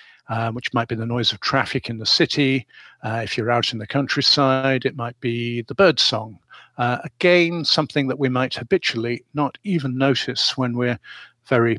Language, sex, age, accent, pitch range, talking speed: English, male, 50-69, British, 115-135 Hz, 180 wpm